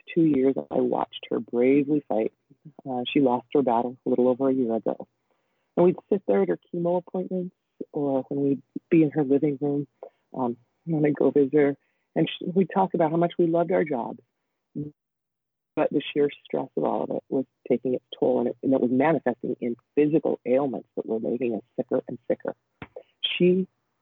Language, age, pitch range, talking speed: English, 40-59, 120-150 Hz, 200 wpm